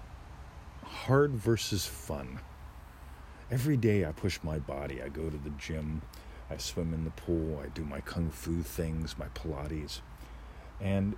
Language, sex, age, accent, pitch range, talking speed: English, male, 40-59, American, 75-100 Hz, 150 wpm